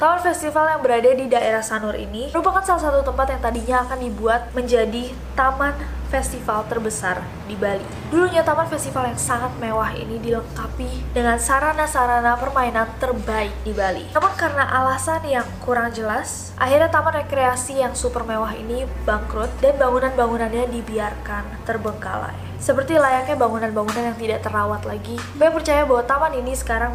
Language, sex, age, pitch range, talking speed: Indonesian, female, 20-39, 225-280 Hz, 150 wpm